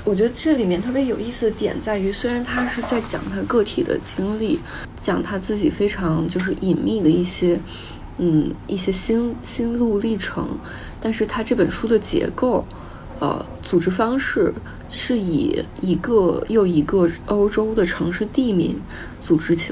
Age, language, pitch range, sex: 20-39, Chinese, 170-215 Hz, female